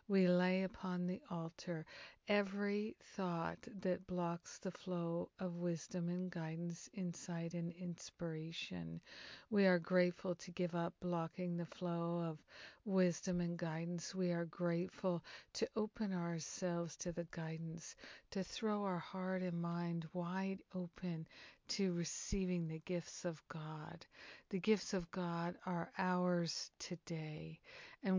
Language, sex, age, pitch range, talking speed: English, female, 50-69, 170-185 Hz, 130 wpm